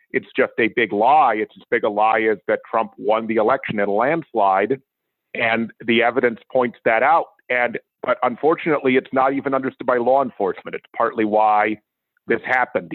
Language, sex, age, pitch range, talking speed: English, male, 50-69, 110-135 Hz, 185 wpm